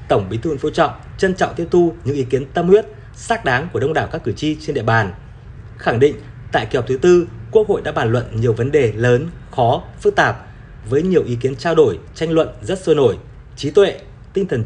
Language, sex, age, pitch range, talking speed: Vietnamese, male, 20-39, 115-160 Hz, 240 wpm